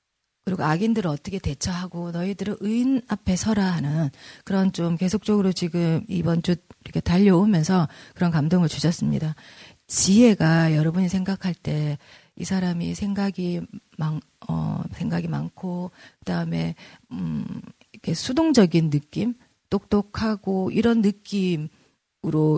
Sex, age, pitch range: female, 40-59, 165-230 Hz